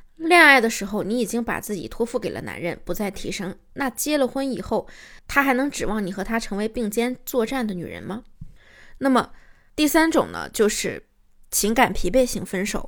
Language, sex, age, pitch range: Chinese, female, 20-39, 205-260 Hz